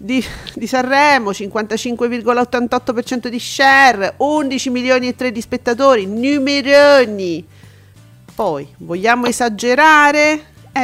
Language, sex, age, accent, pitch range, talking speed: Italian, female, 40-59, native, 215-275 Hz, 95 wpm